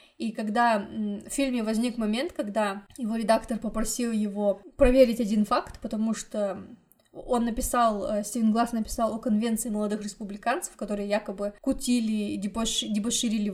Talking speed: 135 wpm